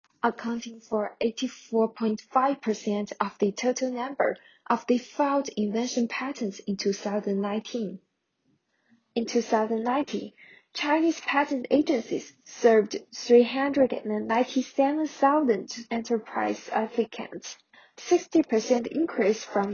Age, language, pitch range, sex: 10-29, Chinese, 220-270 Hz, female